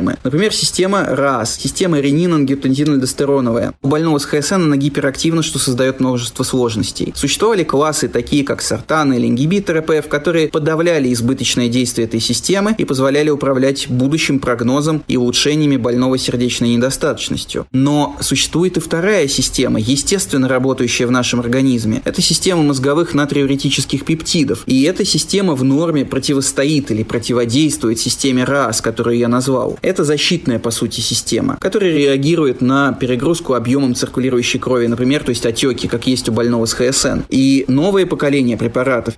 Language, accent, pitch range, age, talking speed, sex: Russian, native, 125-145 Hz, 20-39, 140 wpm, male